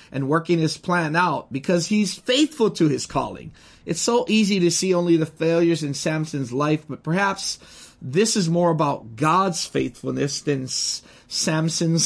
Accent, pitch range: American, 140-175 Hz